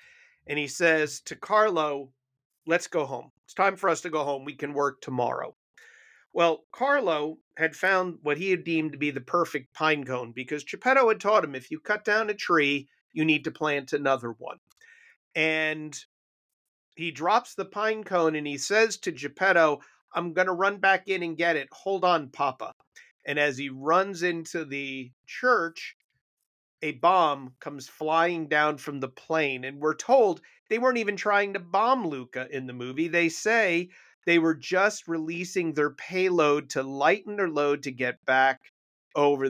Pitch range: 145-185 Hz